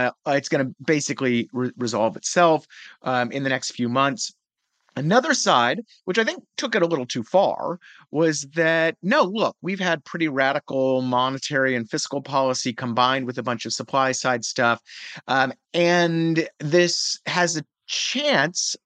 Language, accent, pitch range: English, American, 130-175 Hz